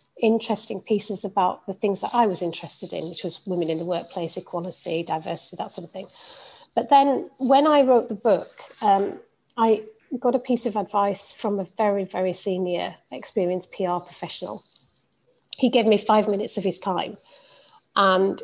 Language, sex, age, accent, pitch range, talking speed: English, female, 40-59, British, 190-245 Hz, 175 wpm